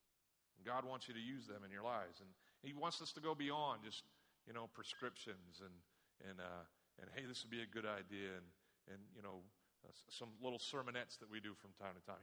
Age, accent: 40-59, American